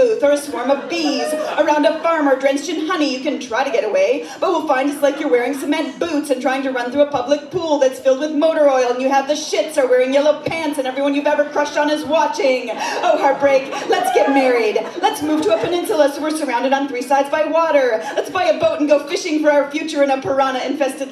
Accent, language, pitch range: American, English, 250-305 Hz